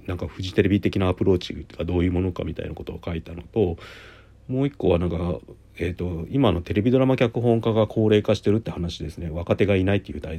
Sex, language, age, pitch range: male, Japanese, 40-59, 85-110 Hz